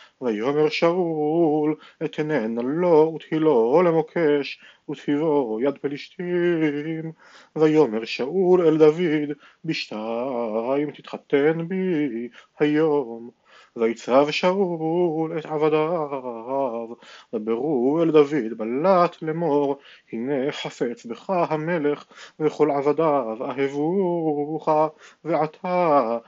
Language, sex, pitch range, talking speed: Hebrew, male, 140-165 Hz, 80 wpm